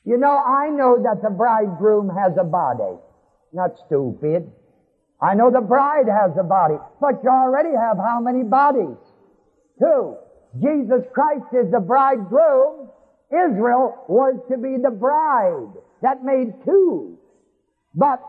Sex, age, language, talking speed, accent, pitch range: male, 50-69, English, 140 wpm, American, 235-300 Hz